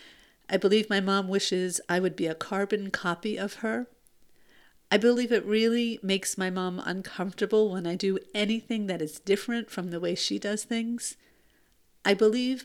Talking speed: 170 wpm